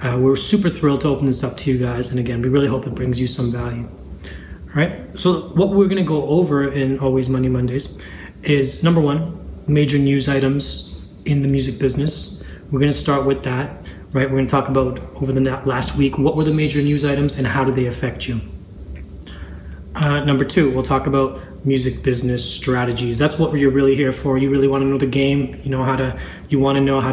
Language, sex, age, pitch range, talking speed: English, male, 20-39, 125-140 Hz, 215 wpm